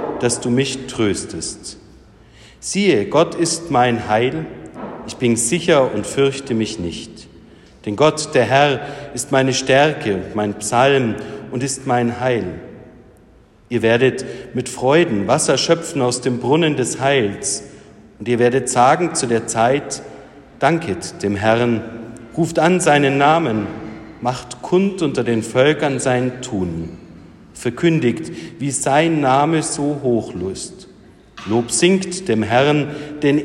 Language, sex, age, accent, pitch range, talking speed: German, male, 50-69, German, 105-140 Hz, 130 wpm